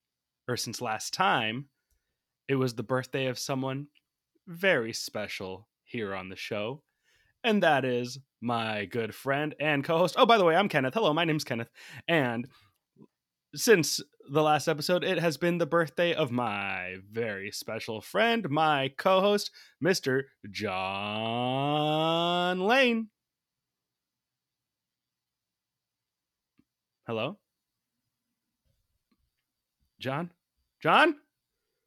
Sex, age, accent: male, 20-39, American